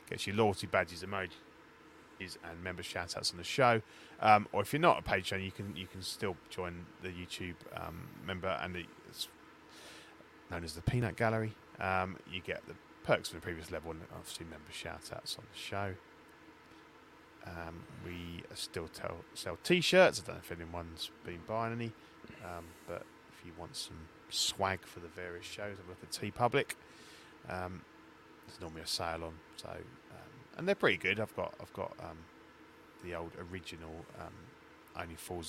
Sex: male